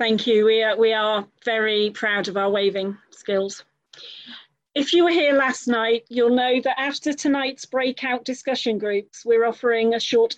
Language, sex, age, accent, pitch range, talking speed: English, female, 40-59, British, 200-235 Hz, 170 wpm